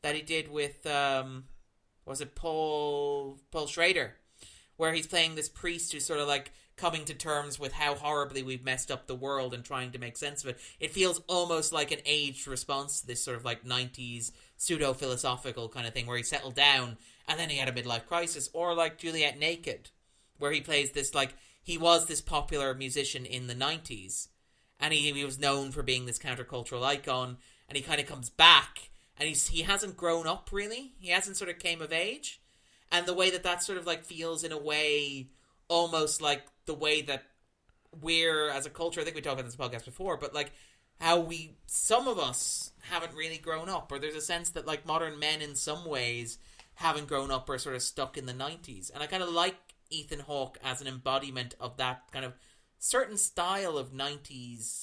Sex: male